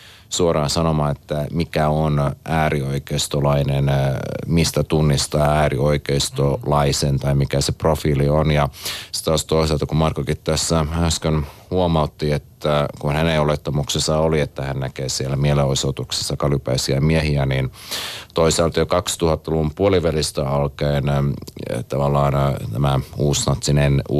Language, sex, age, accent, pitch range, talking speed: Finnish, male, 30-49, native, 70-80 Hz, 110 wpm